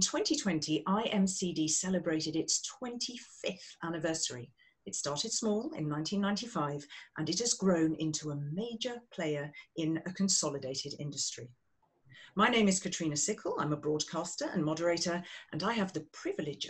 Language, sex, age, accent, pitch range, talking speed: English, female, 40-59, British, 155-205 Hz, 140 wpm